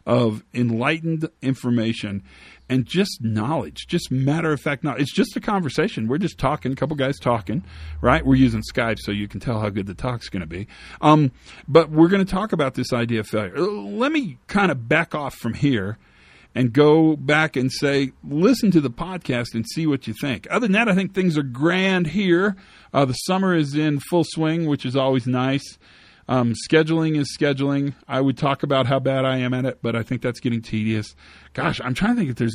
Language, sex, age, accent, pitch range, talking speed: English, male, 40-59, American, 115-160 Hz, 210 wpm